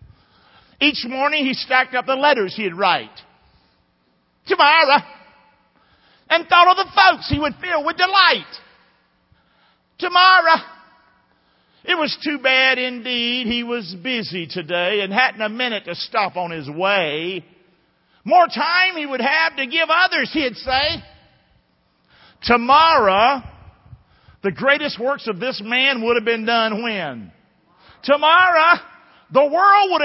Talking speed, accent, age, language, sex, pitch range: 130 wpm, American, 50-69, English, male, 175-275 Hz